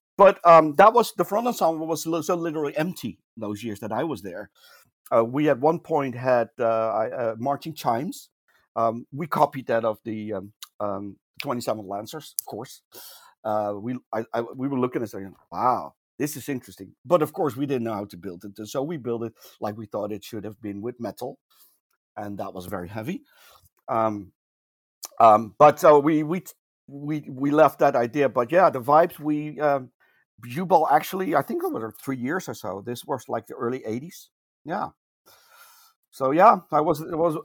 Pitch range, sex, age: 110-160 Hz, male, 50-69